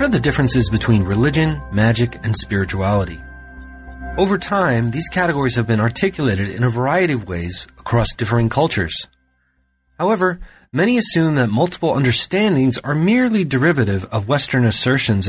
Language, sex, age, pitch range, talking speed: English, male, 30-49, 105-155 Hz, 140 wpm